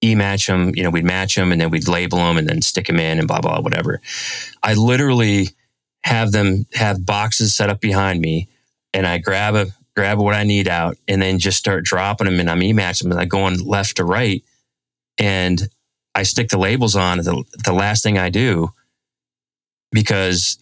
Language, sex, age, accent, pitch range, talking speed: English, male, 30-49, American, 85-105 Hz, 210 wpm